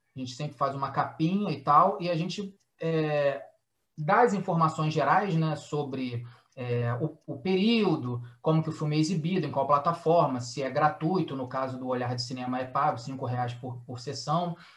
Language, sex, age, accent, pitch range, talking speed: Portuguese, male, 20-39, Brazilian, 135-170 Hz, 190 wpm